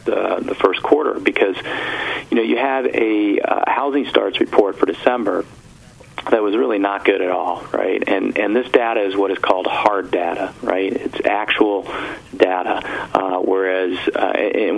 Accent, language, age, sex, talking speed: American, English, 40-59, male, 165 wpm